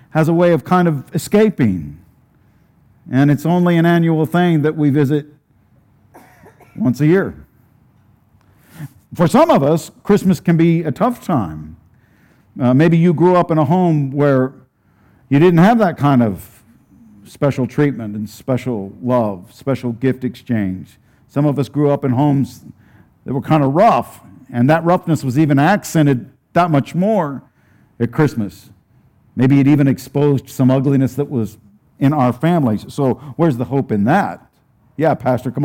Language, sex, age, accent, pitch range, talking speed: English, male, 50-69, American, 115-150 Hz, 160 wpm